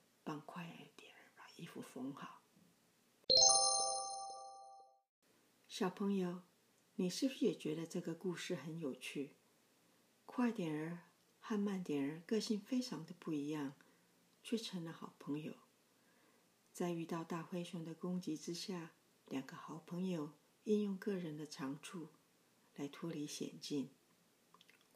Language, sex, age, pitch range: Chinese, female, 50-69, 145-185 Hz